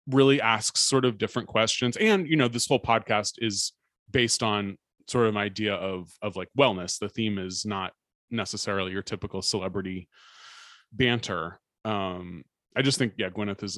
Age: 20-39